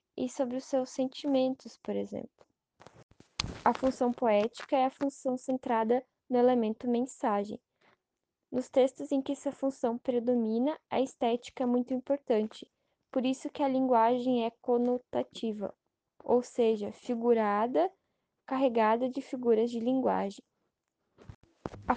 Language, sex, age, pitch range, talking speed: Portuguese, female, 10-29, 235-265 Hz, 125 wpm